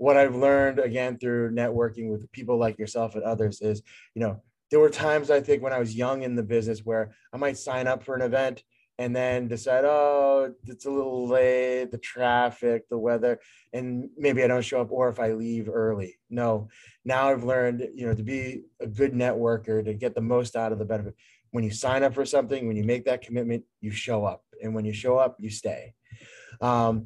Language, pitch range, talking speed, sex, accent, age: English, 115-140 Hz, 220 wpm, male, American, 20-39